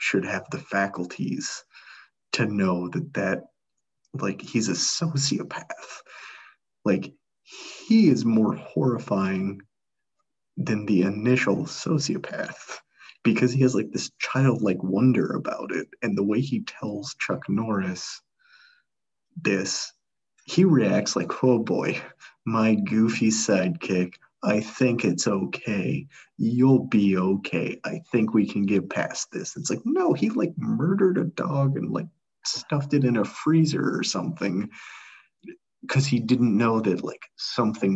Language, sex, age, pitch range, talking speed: English, male, 30-49, 100-140 Hz, 135 wpm